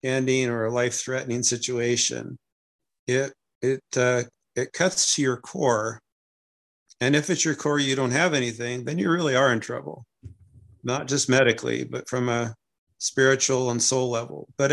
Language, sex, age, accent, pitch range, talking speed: English, male, 50-69, American, 120-135 Hz, 160 wpm